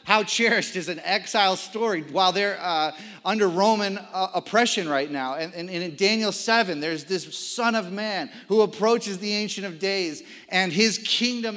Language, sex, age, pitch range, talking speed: English, male, 30-49, 145-210 Hz, 175 wpm